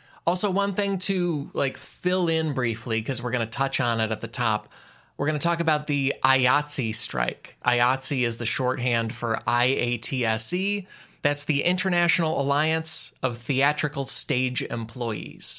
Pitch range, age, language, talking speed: 115-160 Hz, 20-39, English, 155 wpm